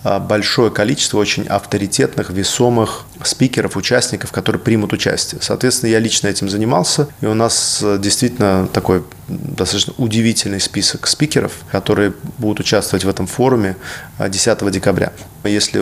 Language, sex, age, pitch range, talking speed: Russian, male, 20-39, 100-115 Hz, 125 wpm